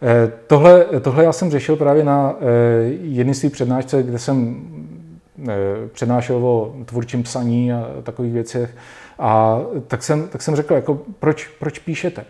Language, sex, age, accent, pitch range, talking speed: Czech, male, 40-59, native, 120-160 Hz, 135 wpm